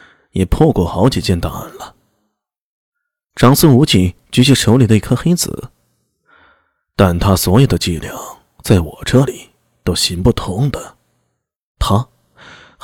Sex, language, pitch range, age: male, Chinese, 95-150 Hz, 20-39